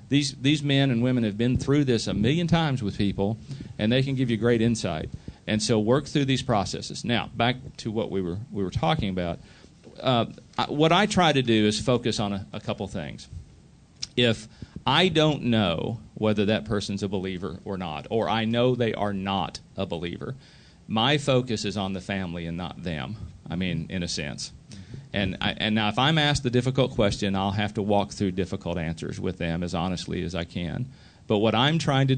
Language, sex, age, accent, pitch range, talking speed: English, male, 40-59, American, 100-130 Hz, 210 wpm